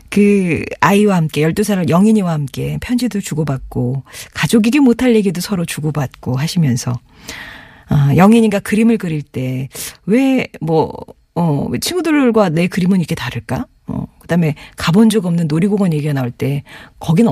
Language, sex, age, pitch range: Korean, female, 40-59, 150-210 Hz